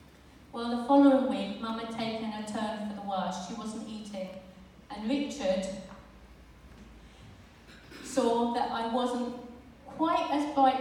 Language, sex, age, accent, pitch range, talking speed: English, female, 40-59, British, 185-235 Hz, 135 wpm